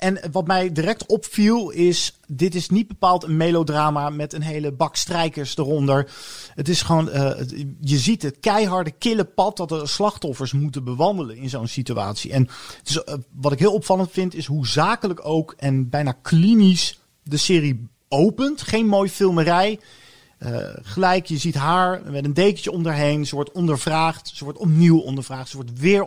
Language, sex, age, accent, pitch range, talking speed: Dutch, male, 40-59, Dutch, 135-175 Hz, 175 wpm